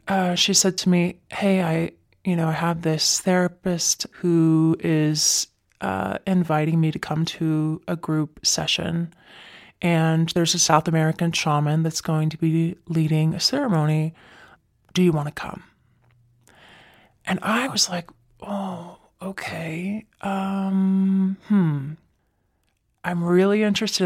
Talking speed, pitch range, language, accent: 130 wpm, 155-185 Hz, English, American